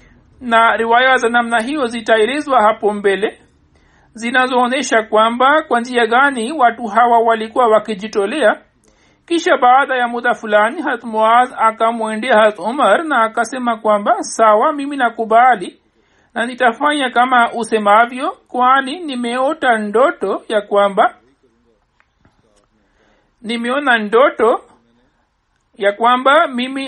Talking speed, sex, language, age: 105 wpm, male, Swahili, 60-79